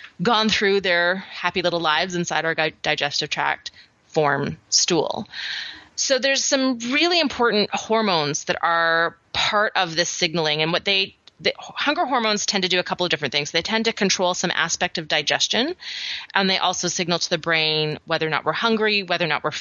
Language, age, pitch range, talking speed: English, 20-39, 155-185 Hz, 195 wpm